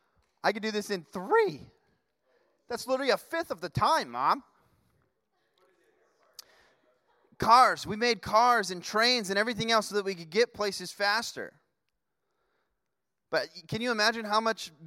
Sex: male